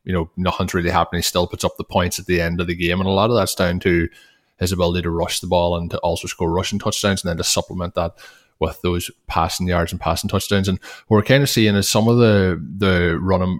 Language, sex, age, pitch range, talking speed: English, male, 20-39, 90-100 Hz, 260 wpm